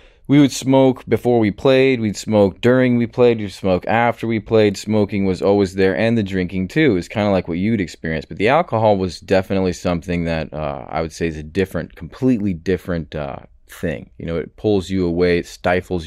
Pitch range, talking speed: 85-100 Hz, 215 wpm